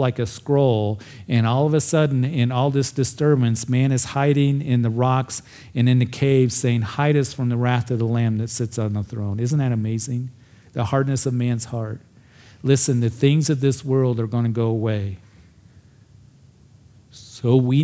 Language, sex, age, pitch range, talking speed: English, male, 40-59, 115-135 Hz, 190 wpm